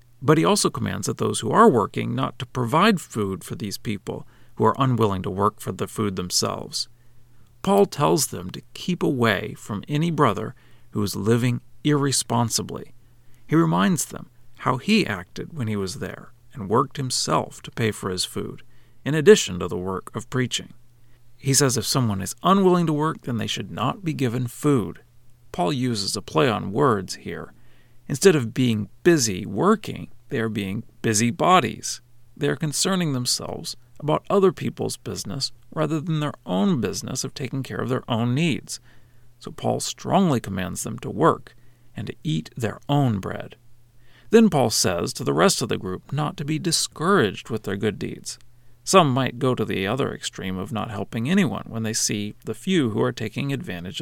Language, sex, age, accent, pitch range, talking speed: English, male, 40-59, American, 110-145 Hz, 185 wpm